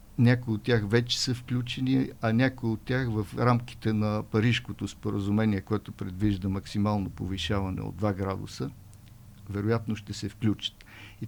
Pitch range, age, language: 105-125 Hz, 50-69, Bulgarian